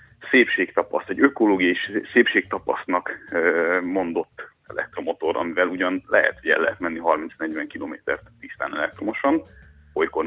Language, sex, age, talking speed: Hungarian, male, 30-49, 105 wpm